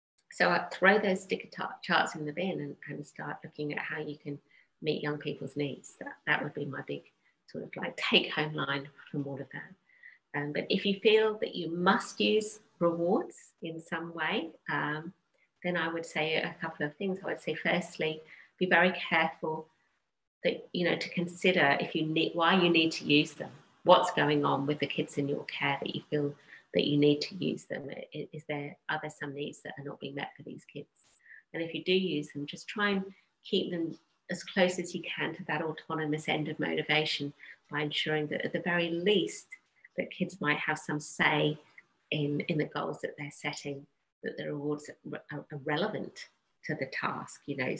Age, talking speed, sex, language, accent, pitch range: 40-59, 205 wpm, female, English, British, 150-175 Hz